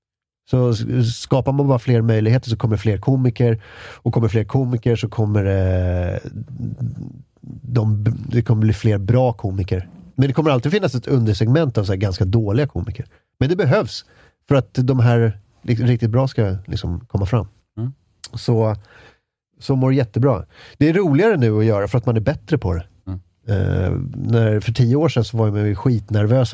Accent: native